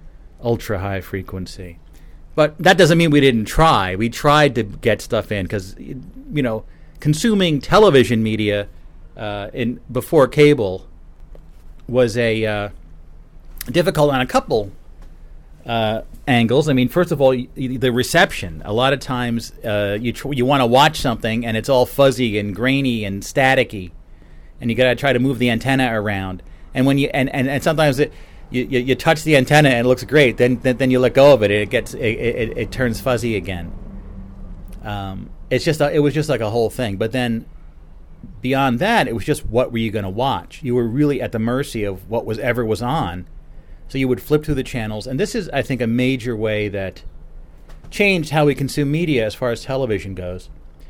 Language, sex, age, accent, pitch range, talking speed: English, male, 40-59, American, 100-135 Hz, 200 wpm